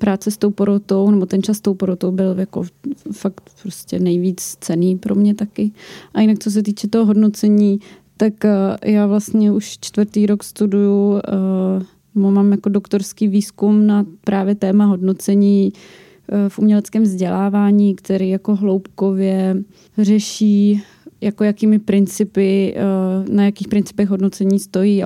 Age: 20-39